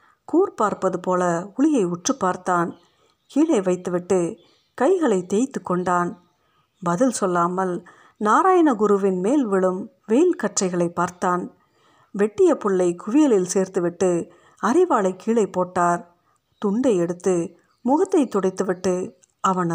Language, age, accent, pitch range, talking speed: Tamil, 50-69, native, 180-220 Hz, 95 wpm